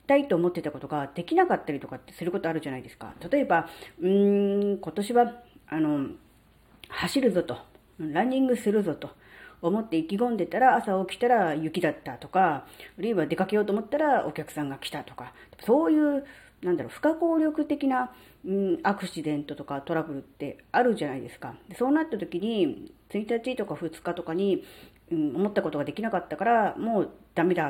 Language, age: Japanese, 40-59